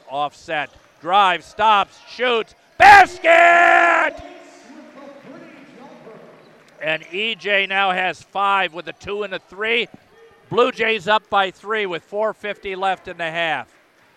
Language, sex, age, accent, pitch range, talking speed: English, male, 50-69, American, 165-210 Hz, 115 wpm